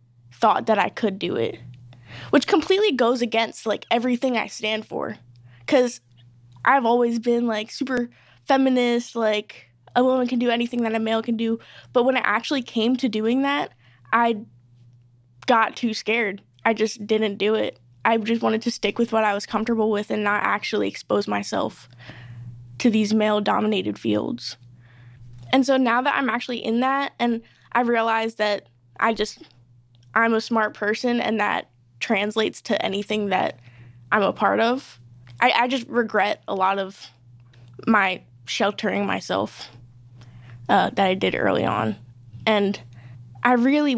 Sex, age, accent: female, 10-29, American